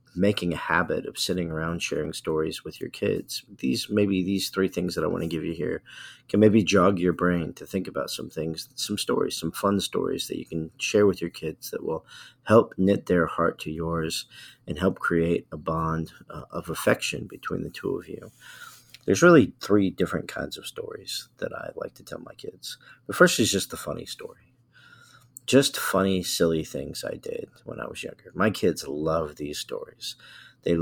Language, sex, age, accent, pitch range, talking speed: English, male, 40-59, American, 80-105 Hz, 200 wpm